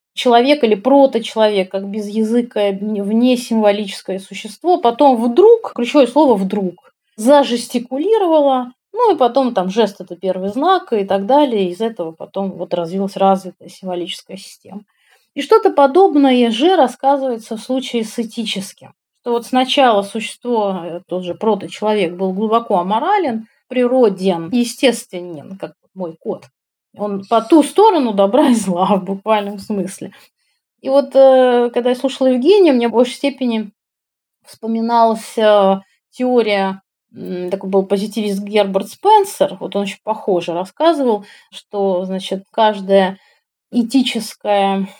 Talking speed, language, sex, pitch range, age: 125 wpm, Russian, female, 200-280 Hz, 30-49